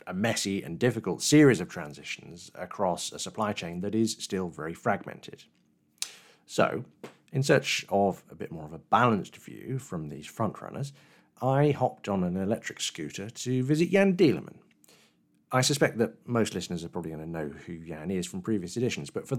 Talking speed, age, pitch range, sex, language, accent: 185 wpm, 40-59, 95-130 Hz, male, English, British